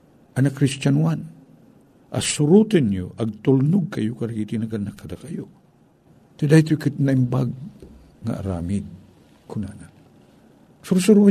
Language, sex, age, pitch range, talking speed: Filipino, male, 60-79, 100-150 Hz, 105 wpm